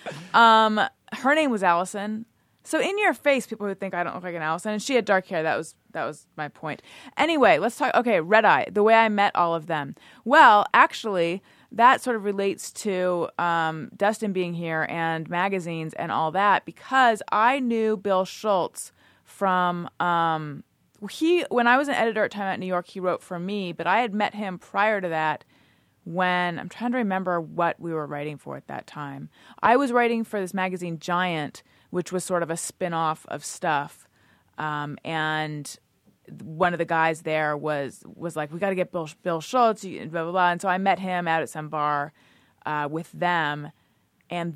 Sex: female